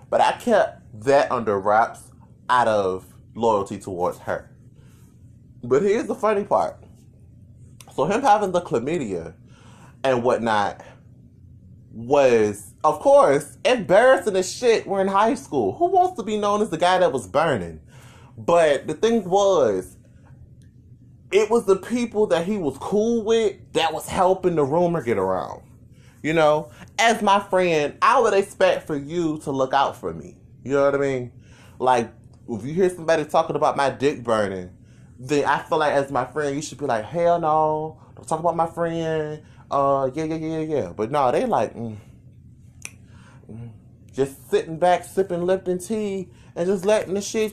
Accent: American